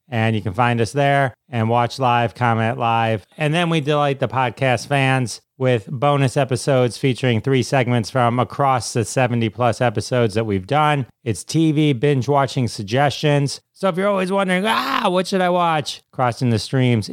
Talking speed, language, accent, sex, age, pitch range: 170 wpm, English, American, male, 30-49, 115-145 Hz